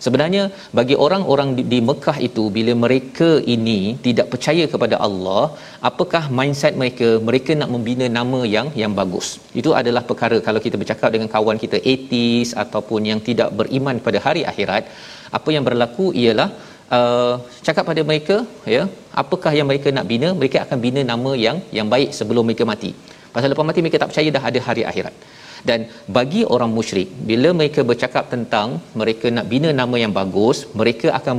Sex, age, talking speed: male, 40-59, 180 wpm